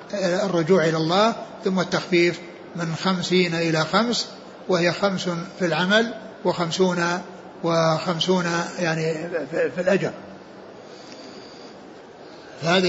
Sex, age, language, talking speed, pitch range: male, 60-79, Arabic, 90 wpm, 175-210 Hz